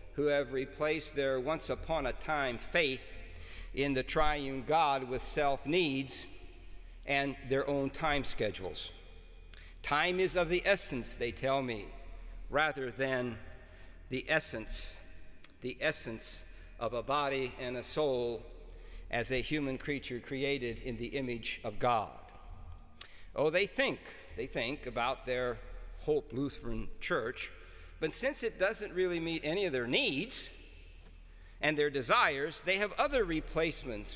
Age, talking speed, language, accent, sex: 60-79, 135 wpm, English, American, male